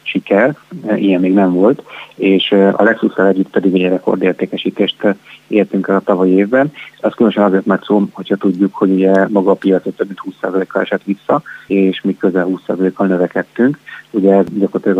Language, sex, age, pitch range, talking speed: Hungarian, male, 30-49, 95-100 Hz, 160 wpm